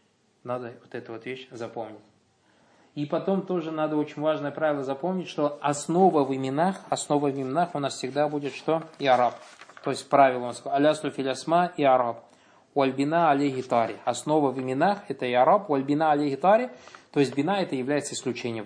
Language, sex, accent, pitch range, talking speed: Russian, male, native, 125-160 Hz, 175 wpm